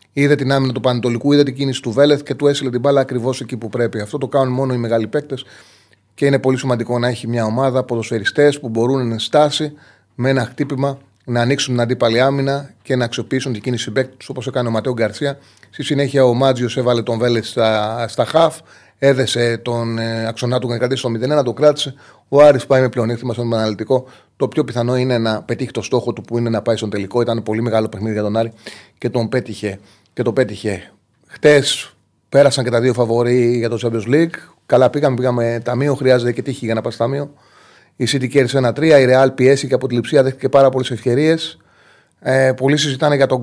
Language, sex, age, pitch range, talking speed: Greek, male, 30-49, 115-135 Hz, 215 wpm